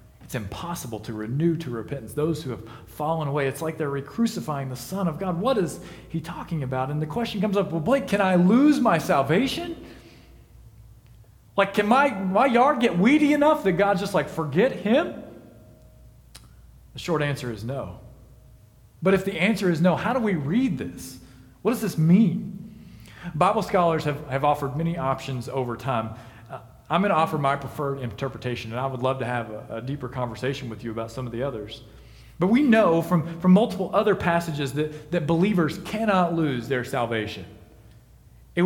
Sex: male